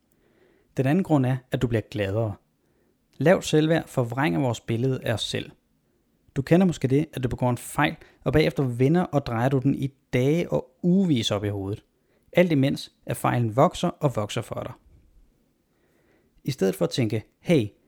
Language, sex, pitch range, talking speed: Danish, male, 120-155 Hz, 180 wpm